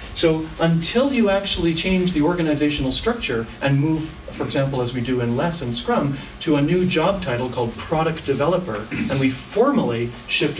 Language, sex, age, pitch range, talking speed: English, male, 40-59, 120-150 Hz, 175 wpm